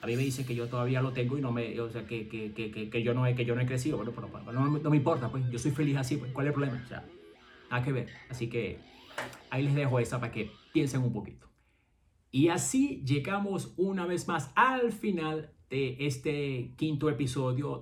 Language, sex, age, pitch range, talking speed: Spanish, male, 30-49, 115-145 Hz, 240 wpm